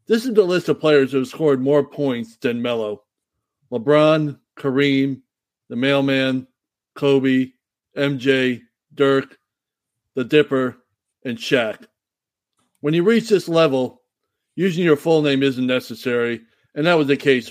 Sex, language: male, English